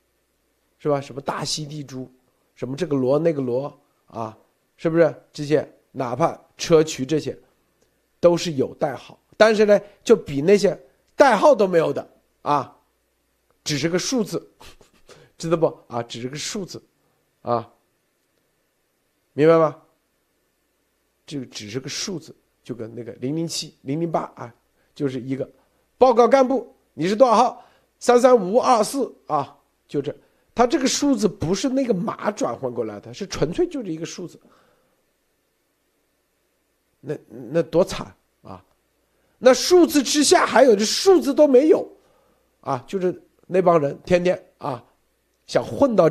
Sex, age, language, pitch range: male, 50-69, Chinese, 135-205 Hz